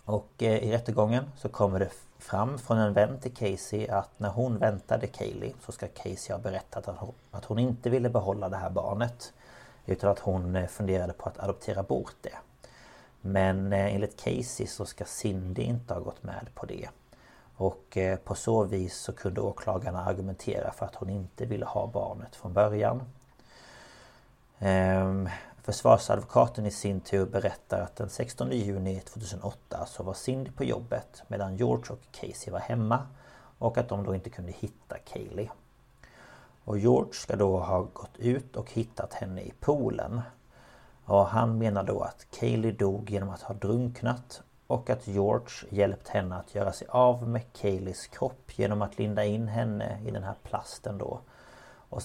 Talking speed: 170 wpm